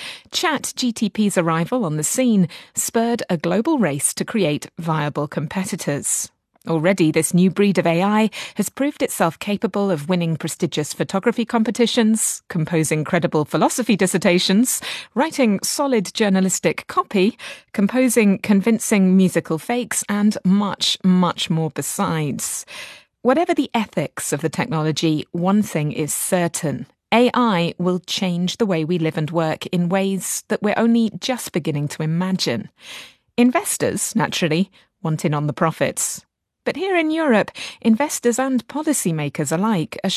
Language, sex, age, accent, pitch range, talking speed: English, female, 30-49, British, 165-225 Hz, 135 wpm